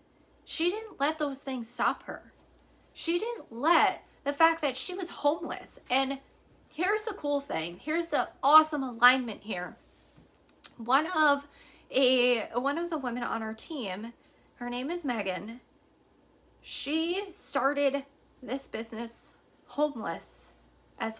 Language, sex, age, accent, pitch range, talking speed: English, female, 20-39, American, 230-295 Hz, 130 wpm